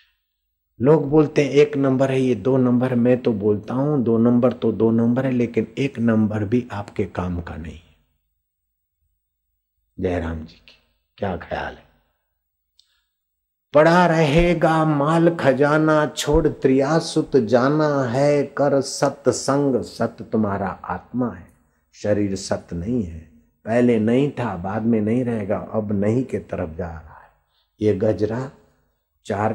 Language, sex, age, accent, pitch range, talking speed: Hindi, male, 50-69, native, 95-135 Hz, 145 wpm